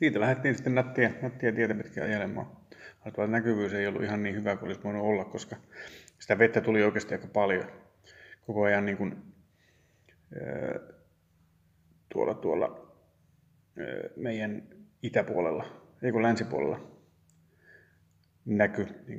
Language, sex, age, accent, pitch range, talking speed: Finnish, male, 30-49, native, 100-160 Hz, 115 wpm